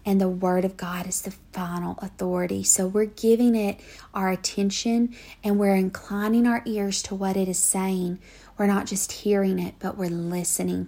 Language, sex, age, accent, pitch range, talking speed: English, female, 40-59, American, 185-210 Hz, 180 wpm